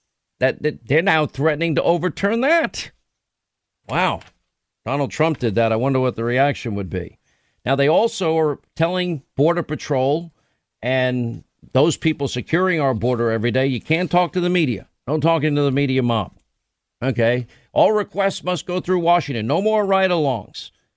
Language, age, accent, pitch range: English, 50-69, American, 130-160 Hz